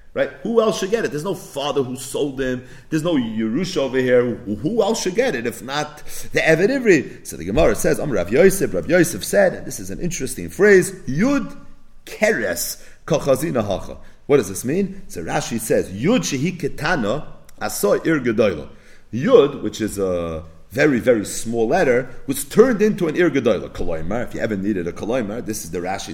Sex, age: male, 40-59